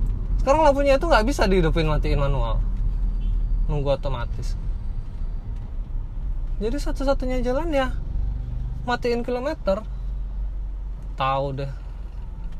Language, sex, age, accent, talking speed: Indonesian, male, 20-39, native, 85 wpm